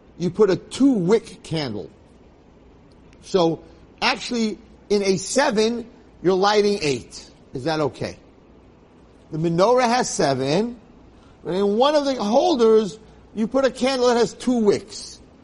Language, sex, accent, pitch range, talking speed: English, male, American, 145-215 Hz, 130 wpm